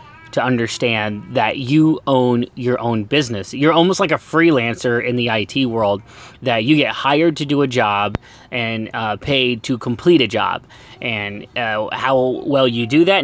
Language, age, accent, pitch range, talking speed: English, 30-49, American, 120-155 Hz, 175 wpm